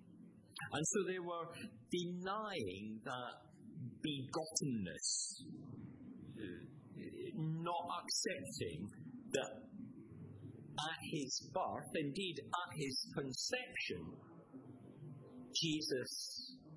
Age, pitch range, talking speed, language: 50-69, 110-160 Hz, 65 wpm, English